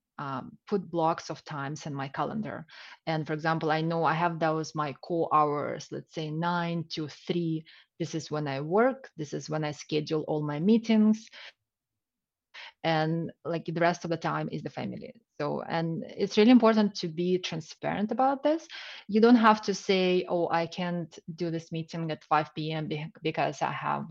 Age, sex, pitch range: 20-39, female, 155-200 Hz